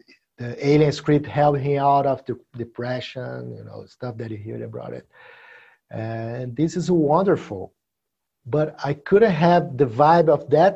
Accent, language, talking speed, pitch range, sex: Brazilian, English, 160 wpm, 125-160 Hz, male